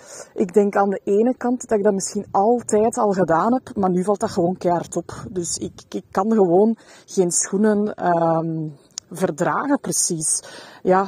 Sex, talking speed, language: female, 170 wpm, Dutch